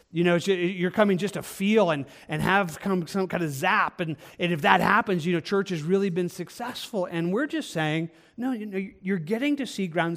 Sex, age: male, 40-59